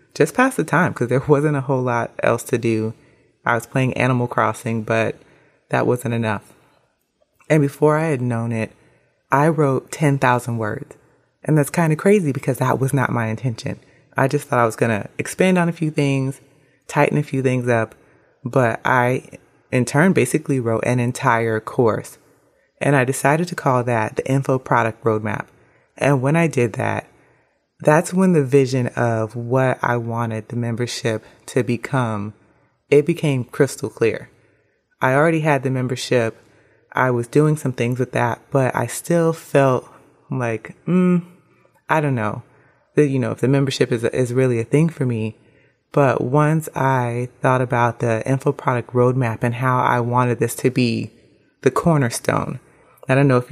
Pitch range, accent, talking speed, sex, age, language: 120-145 Hz, American, 175 wpm, female, 30-49, English